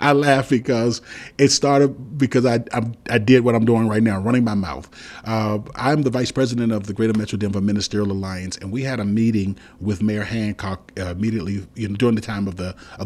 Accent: American